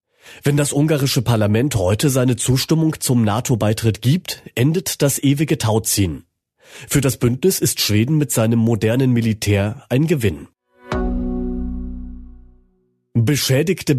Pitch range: 110-140 Hz